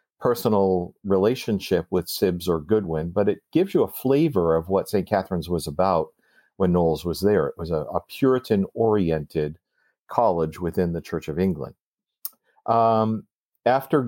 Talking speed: 155 wpm